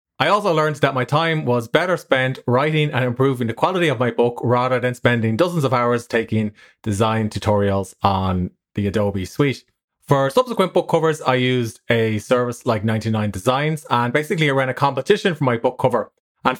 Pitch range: 110-145 Hz